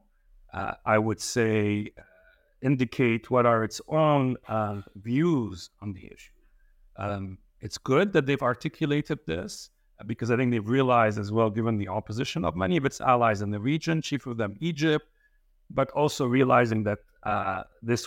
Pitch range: 110-135 Hz